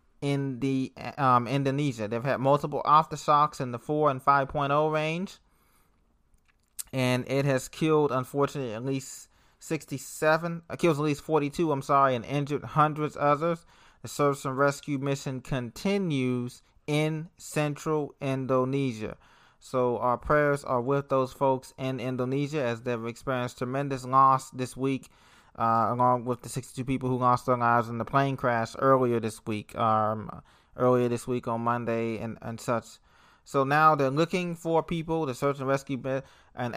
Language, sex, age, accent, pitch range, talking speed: English, male, 20-39, American, 125-150 Hz, 155 wpm